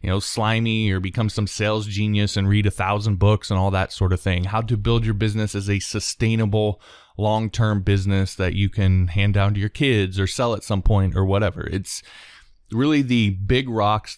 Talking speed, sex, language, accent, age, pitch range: 210 wpm, male, English, American, 20-39, 90-105 Hz